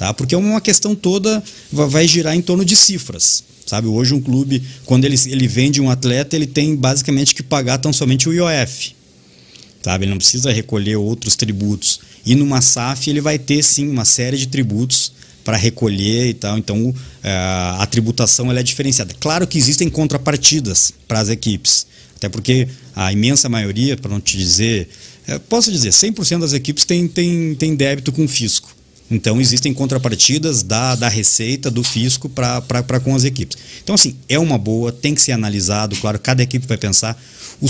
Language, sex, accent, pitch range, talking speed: Portuguese, male, Brazilian, 110-145 Hz, 175 wpm